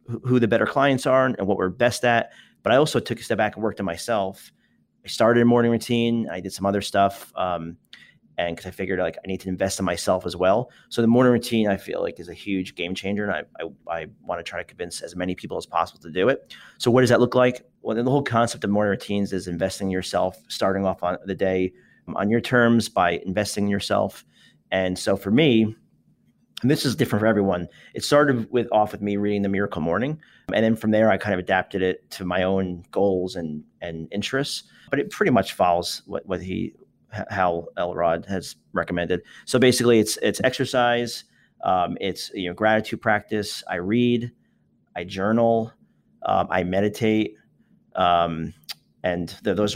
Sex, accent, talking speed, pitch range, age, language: male, American, 210 wpm, 95-115 Hz, 30-49, English